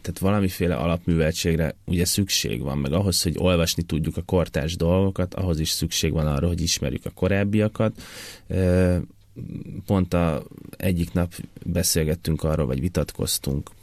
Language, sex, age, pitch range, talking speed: Hungarian, male, 30-49, 80-95 Hz, 135 wpm